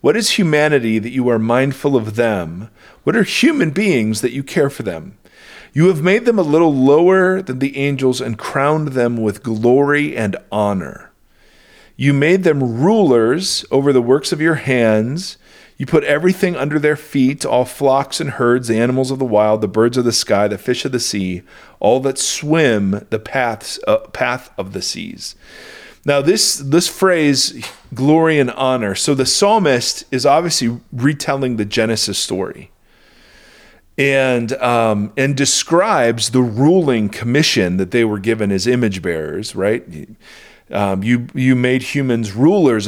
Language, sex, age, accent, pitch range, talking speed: English, male, 40-59, American, 110-145 Hz, 160 wpm